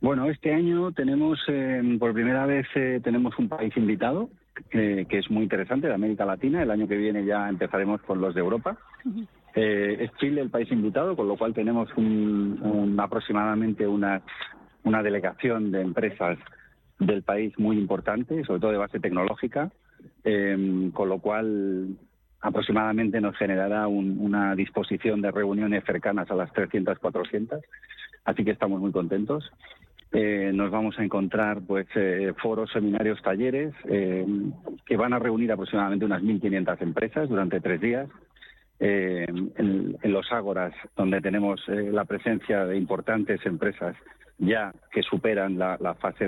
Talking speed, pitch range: 150 wpm, 100-115 Hz